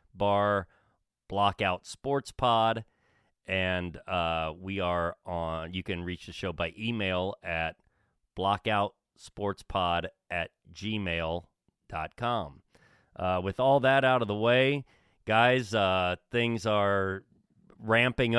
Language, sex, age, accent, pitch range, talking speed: English, male, 40-59, American, 90-115 Hz, 110 wpm